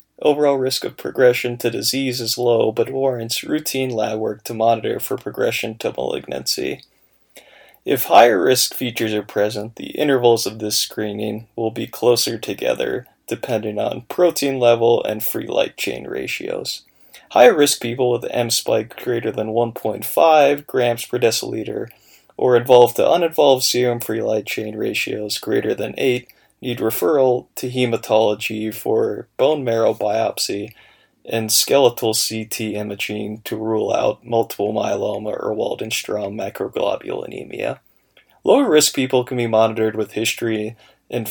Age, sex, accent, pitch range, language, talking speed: 20-39, male, American, 110-125 Hz, English, 140 wpm